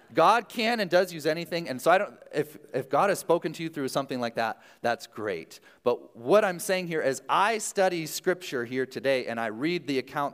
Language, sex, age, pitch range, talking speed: English, male, 30-49, 110-150 Hz, 225 wpm